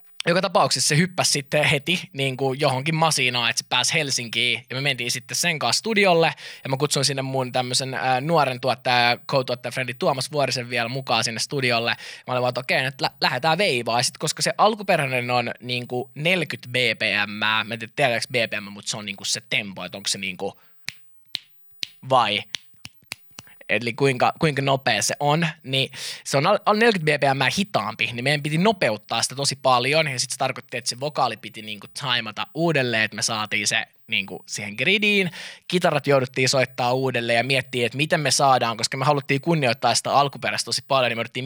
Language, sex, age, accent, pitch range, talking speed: Finnish, male, 20-39, native, 120-150 Hz, 195 wpm